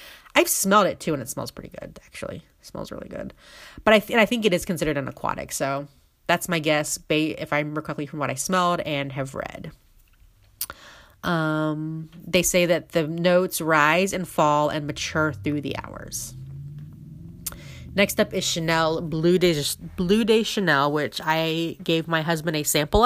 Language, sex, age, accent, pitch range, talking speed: English, female, 30-49, American, 150-175 Hz, 180 wpm